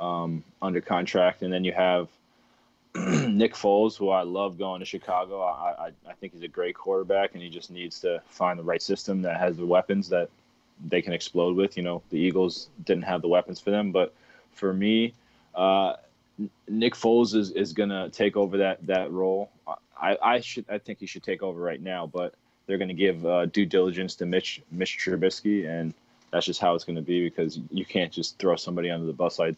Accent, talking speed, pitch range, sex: American, 215 wpm, 85-100 Hz, male